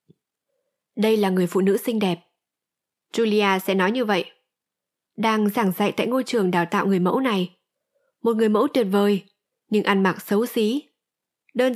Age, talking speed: 20-39, 175 wpm